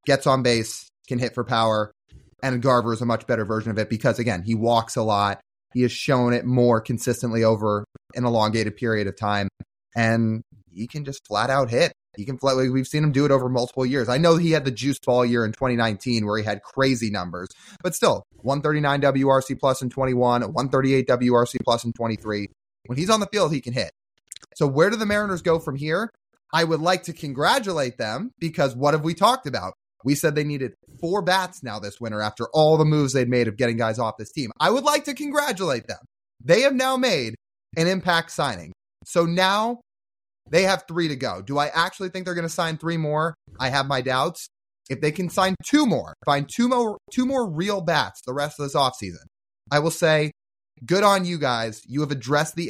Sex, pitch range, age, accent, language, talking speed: male, 115-165 Hz, 20-39, American, English, 215 wpm